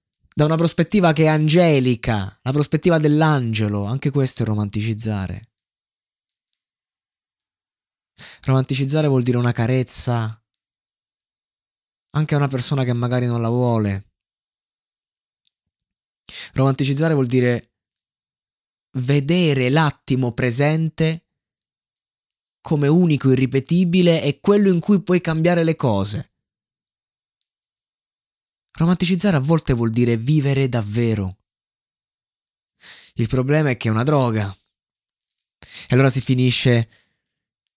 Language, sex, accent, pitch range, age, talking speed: Italian, male, native, 120-150 Hz, 20-39, 100 wpm